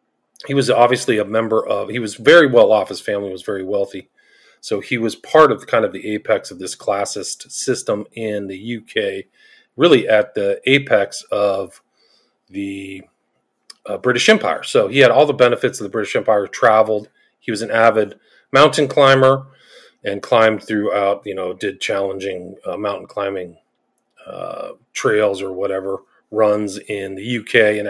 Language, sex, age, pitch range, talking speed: English, male, 40-59, 95-115 Hz, 165 wpm